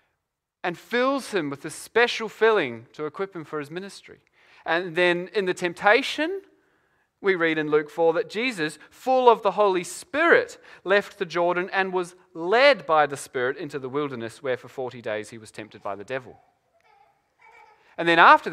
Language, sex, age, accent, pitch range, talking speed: English, male, 30-49, Australian, 165-245 Hz, 180 wpm